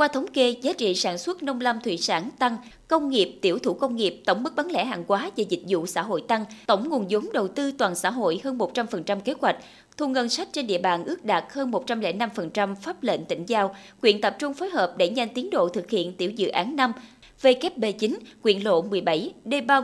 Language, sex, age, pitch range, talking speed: Vietnamese, female, 20-39, 195-275 Hz, 235 wpm